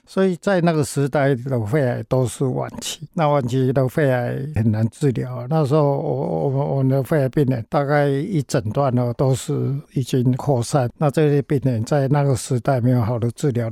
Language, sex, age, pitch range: Chinese, male, 60-79, 125-145 Hz